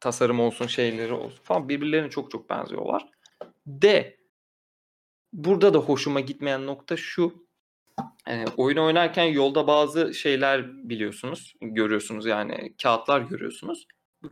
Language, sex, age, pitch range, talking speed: Turkish, male, 30-49, 115-155 Hz, 115 wpm